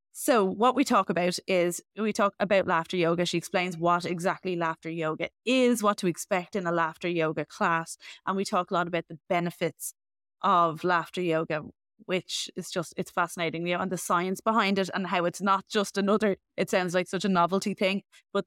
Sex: female